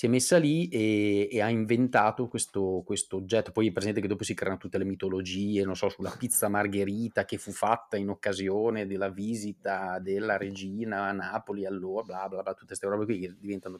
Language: Italian